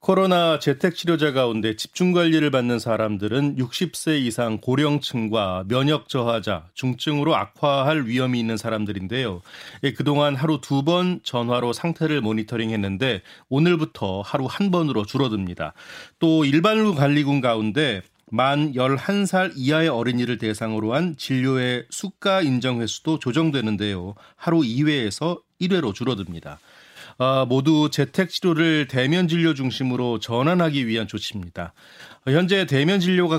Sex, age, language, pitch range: male, 30-49, Korean, 115-160 Hz